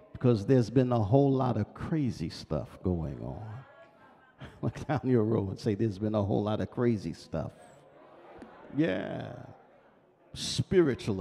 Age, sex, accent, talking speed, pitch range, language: 50-69, male, American, 145 wpm, 105-130 Hz, English